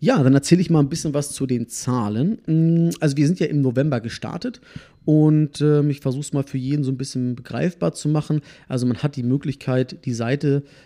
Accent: German